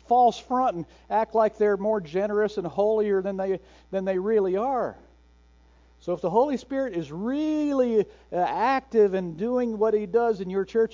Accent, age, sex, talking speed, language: American, 60-79, male, 175 wpm, English